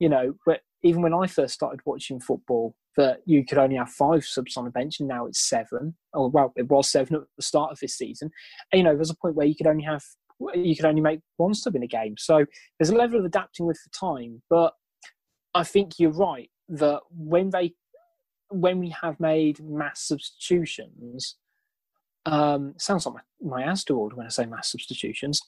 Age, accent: 20-39, British